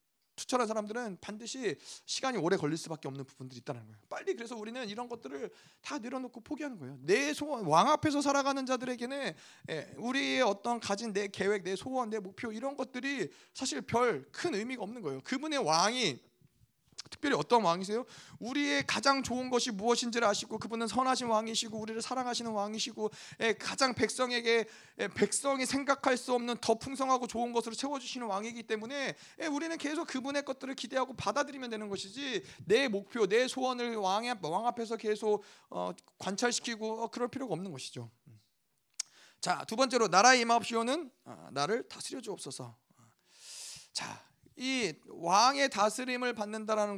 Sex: male